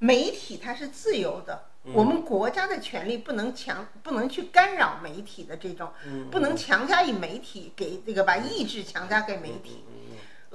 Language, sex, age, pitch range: Chinese, female, 50-69, 200-300 Hz